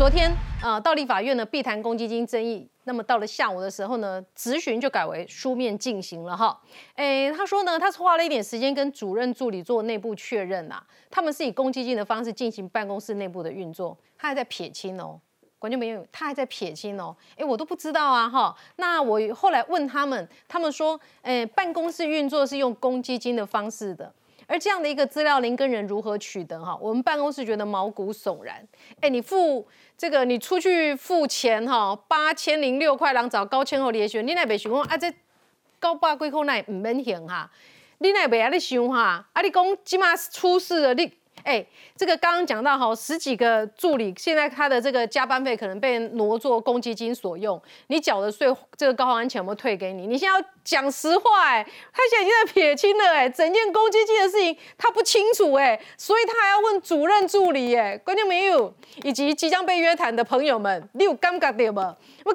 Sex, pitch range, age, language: female, 230-335 Hz, 30-49, Chinese